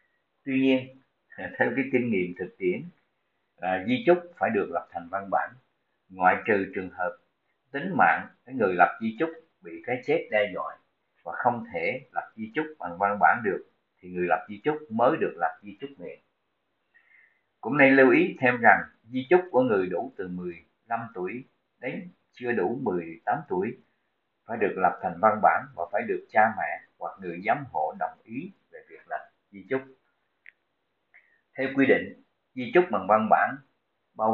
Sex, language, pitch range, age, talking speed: male, Vietnamese, 105-160 Hz, 50-69, 180 wpm